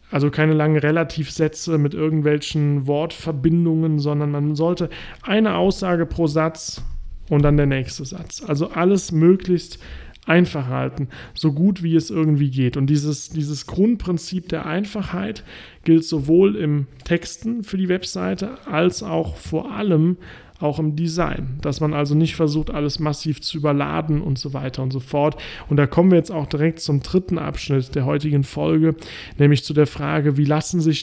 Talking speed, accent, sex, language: 165 wpm, German, male, German